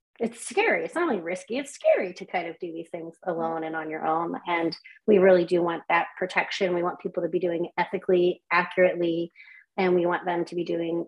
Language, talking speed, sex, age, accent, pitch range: English, 225 wpm, female, 30-49, American, 170-200 Hz